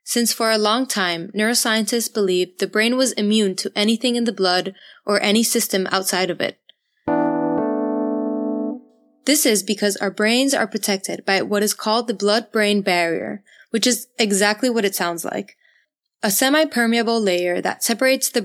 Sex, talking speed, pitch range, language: female, 160 wpm, 190-230 Hz, English